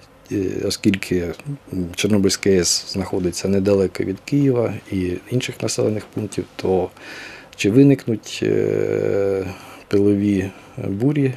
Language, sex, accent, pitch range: Ukrainian, male, native, 95-115 Hz